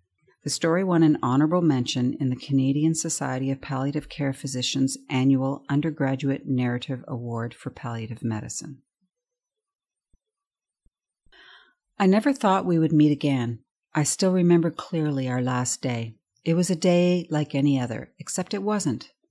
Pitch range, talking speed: 130-175 Hz, 140 wpm